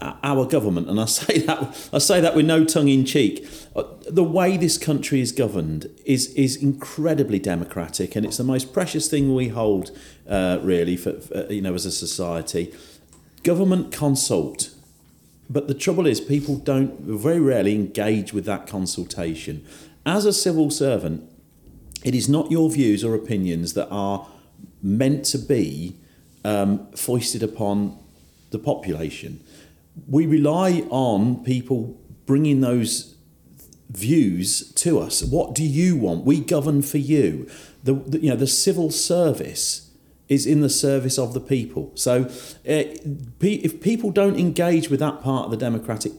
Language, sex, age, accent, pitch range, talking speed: English, male, 40-59, British, 105-150 Hz, 155 wpm